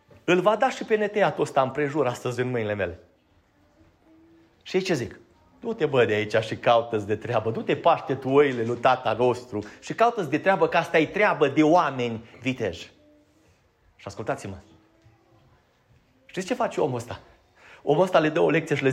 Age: 30-49